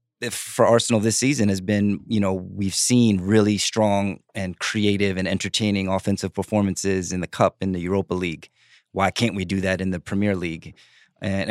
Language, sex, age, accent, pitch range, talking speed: English, male, 30-49, American, 95-115 Hz, 185 wpm